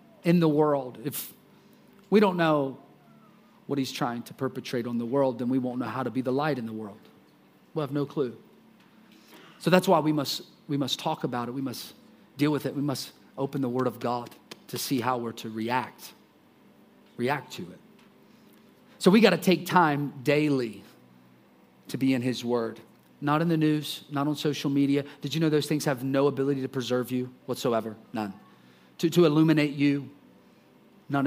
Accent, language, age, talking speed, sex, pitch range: American, English, 30-49, 190 wpm, male, 120-150 Hz